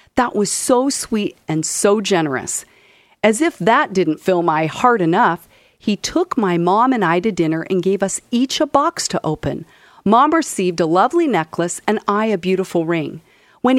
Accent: American